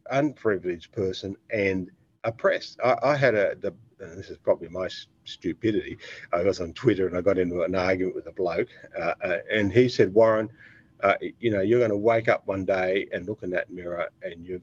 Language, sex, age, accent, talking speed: English, male, 50-69, Australian, 200 wpm